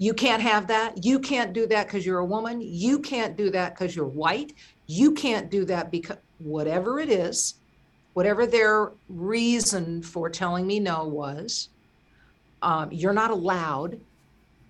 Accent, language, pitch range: American, English, 155-210 Hz